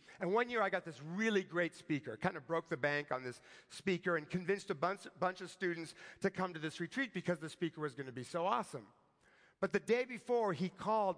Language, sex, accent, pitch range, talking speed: English, male, American, 160-200 Hz, 235 wpm